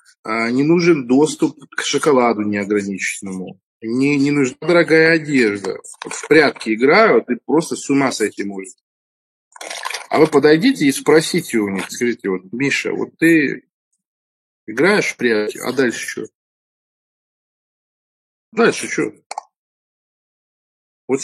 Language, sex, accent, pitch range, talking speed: Russian, male, native, 110-150 Hz, 120 wpm